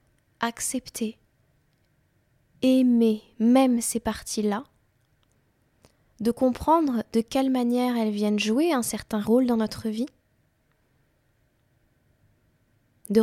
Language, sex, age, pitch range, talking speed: French, female, 20-39, 200-240 Hz, 90 wpm